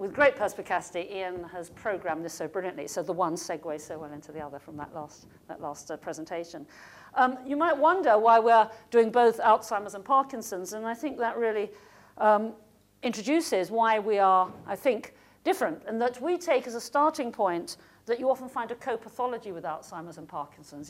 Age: 50-69